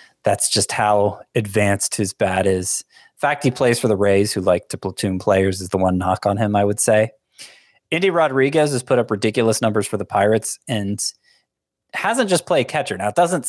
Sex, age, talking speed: male, 20-39, 200 wpm